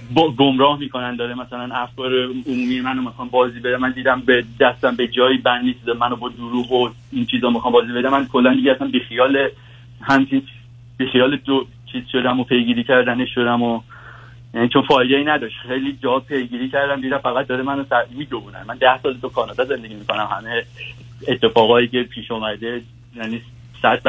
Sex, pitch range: male, 120-140 Hz